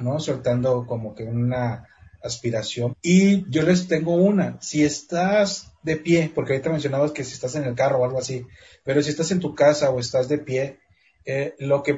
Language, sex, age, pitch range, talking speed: Spanish, male, 30-49, 130-175 Hz, 195 wpm